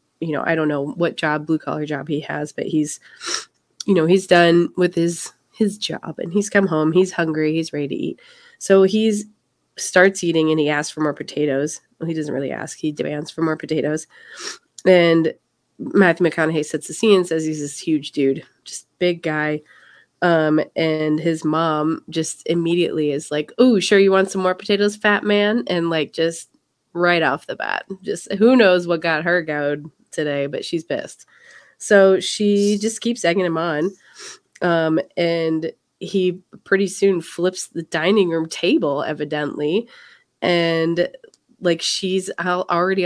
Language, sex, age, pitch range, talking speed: English, female, 20-39, 160-205 Hz, 170 wpm